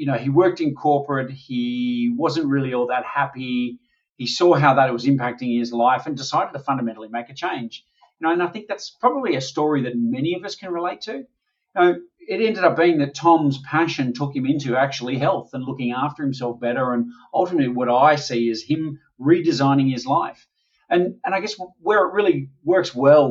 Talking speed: 205 wpm